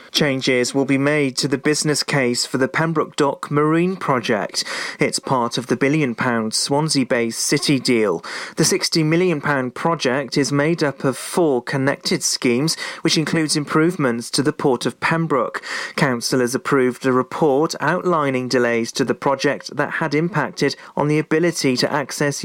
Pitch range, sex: 130-155 Hz, male